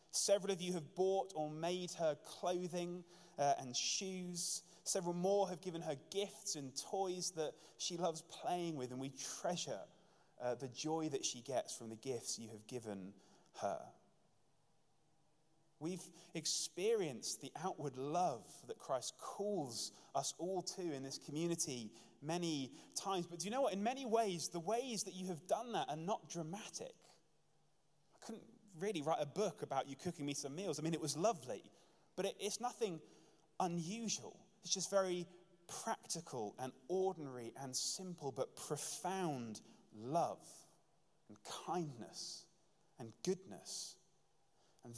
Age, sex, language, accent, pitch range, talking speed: 20-39, male, English, British, 140-185 Hz, 150 wpm